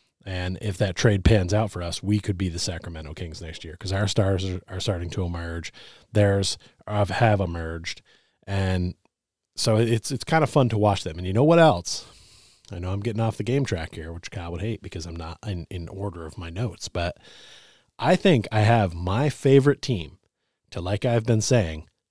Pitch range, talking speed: 85-110 Hz, 210 wpm